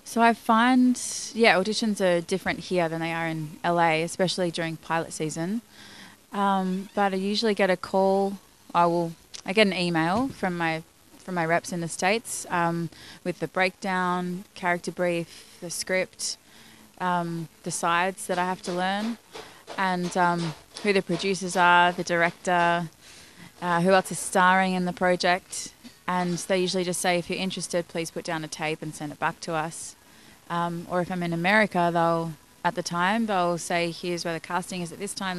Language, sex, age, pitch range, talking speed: English, female, 20-39, 170-190 Hz, 185 wpm